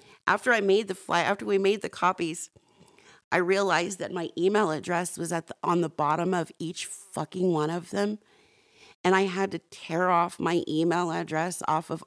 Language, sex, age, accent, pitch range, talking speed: English, female, 40-59, American, 175-225 Hz, 195 wpm